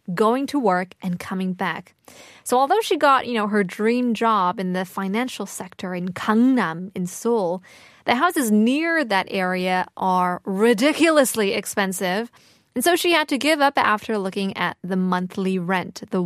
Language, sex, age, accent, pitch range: Korean, female, 20-39, American, 190-260 Hz